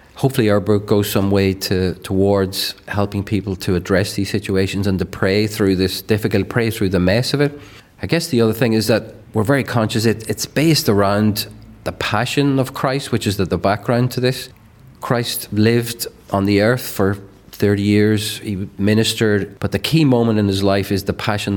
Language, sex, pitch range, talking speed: English, male, 100-120 Hz, 190 wpm